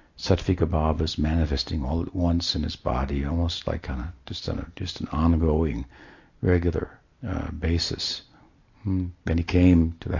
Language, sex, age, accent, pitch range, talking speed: English, male, 60-79, American, 85-105 Hz, 140 wpm